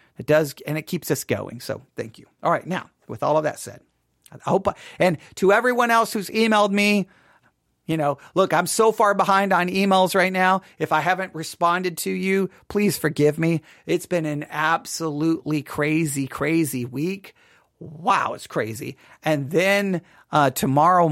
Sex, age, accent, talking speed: male, 40-59, American, 175 wpm